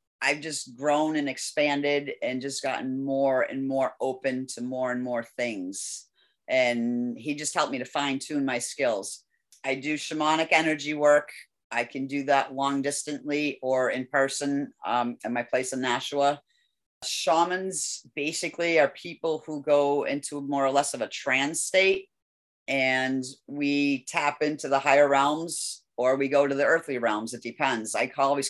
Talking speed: 170 wpm